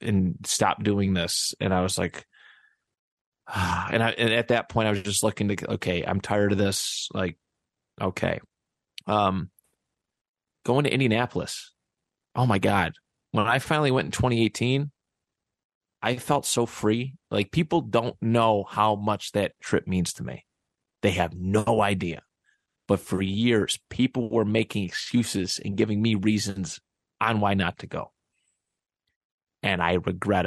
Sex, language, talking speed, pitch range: male, English, 155 wpm, 100-120 Hz